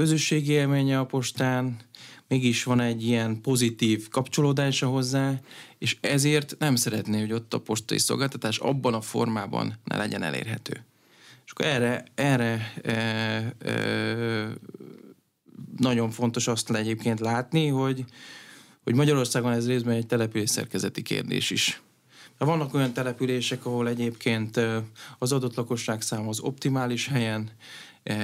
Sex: male